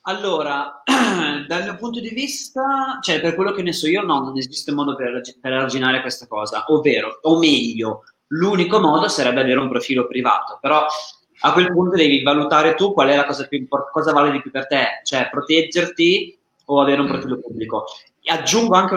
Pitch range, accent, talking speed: 130-180 Hz, native, 190 wpm